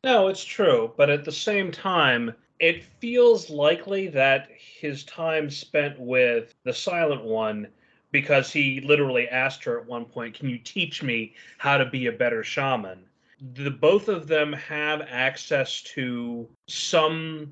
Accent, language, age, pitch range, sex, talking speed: American, English, 30-49, 120-155 Hz, male, 155 wpm